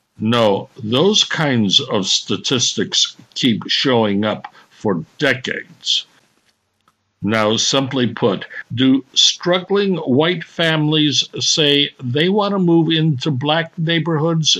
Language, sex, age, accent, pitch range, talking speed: English, male, 60-79, American, 120-170 Hz, 105 wpm